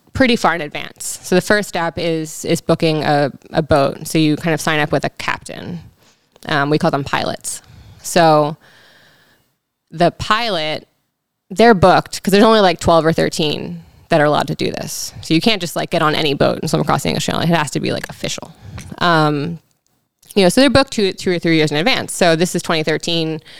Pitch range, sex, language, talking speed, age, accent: 150-175 Hz, female, English, 215 wpm, 20-39, American